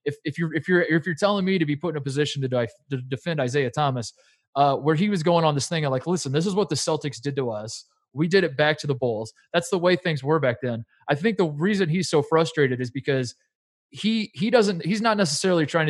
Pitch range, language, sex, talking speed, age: 130-170 Hz, English, male, 265 wpm, 20-39